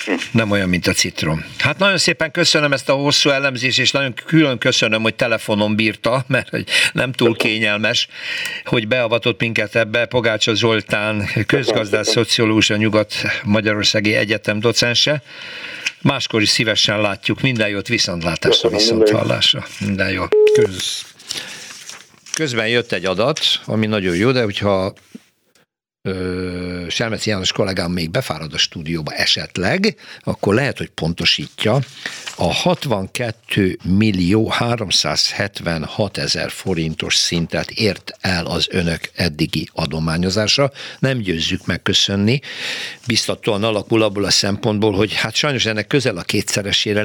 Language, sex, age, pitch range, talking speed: Hungarian, male, 60-79, 95-120 Hz, 120 wpm